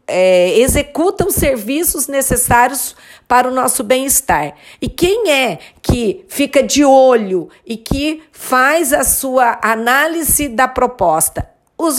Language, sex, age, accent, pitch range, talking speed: Portuguese, female, 50-69, Brazilian, 220-295 Hz, 120 wpm